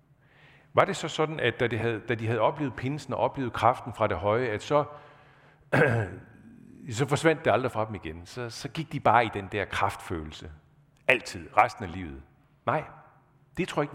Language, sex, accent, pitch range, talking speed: Danish, male, native, 95-140 Hz, 200 wpm